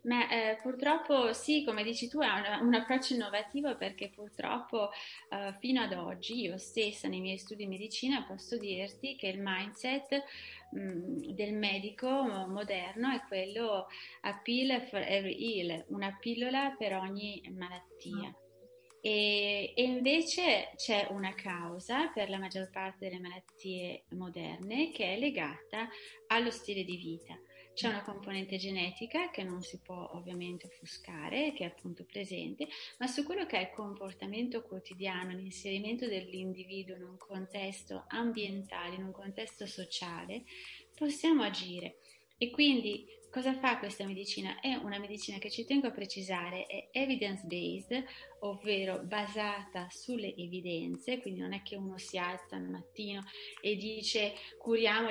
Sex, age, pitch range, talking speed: female, 30-49, 190-245 Hz, 145 wpm